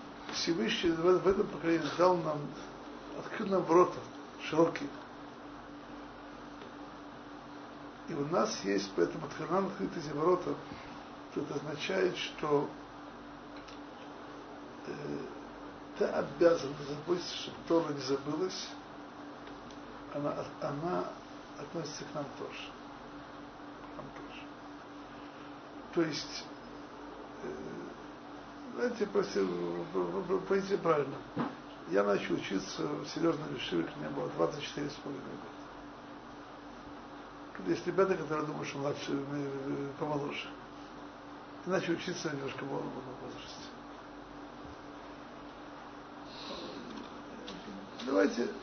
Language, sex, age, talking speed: Russian, male, 60-79, 90 wpm